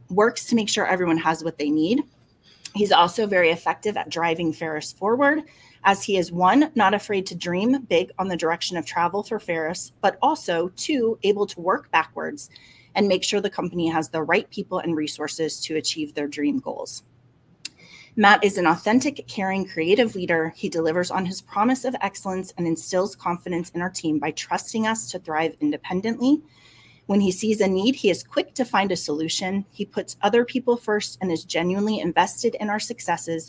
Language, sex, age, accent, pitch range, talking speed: English, female, 30-49, American, 165-210 Hz, 190 wpm